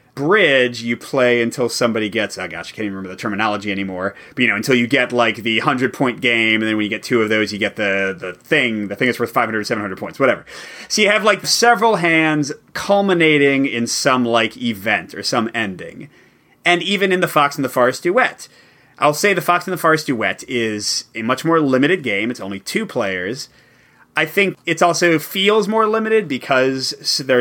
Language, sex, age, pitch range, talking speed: English, male, 30-49, 120-160 Hz, 215 wpm